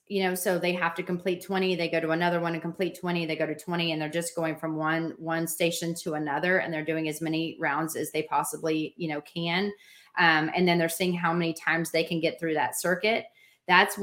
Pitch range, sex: 160-185 Hz, female